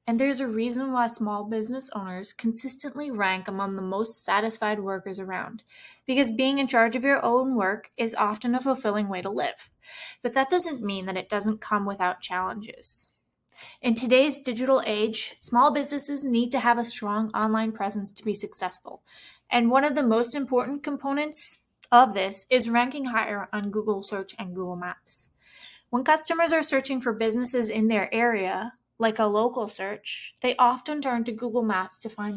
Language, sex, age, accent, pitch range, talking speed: English, female, 20-39, American, 210-260 Hz, 180 wpm